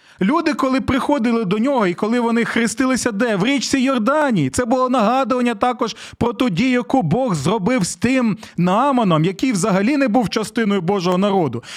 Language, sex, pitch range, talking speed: Ukrainian, male, 195-250 Hz, 170 wpm